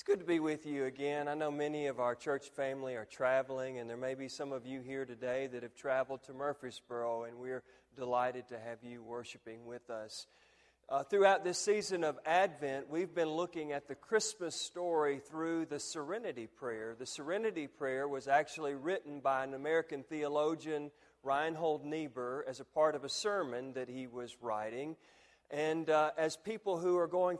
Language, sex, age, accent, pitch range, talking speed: English, male, 40-59, American, 130-160 Hz, 185 wpm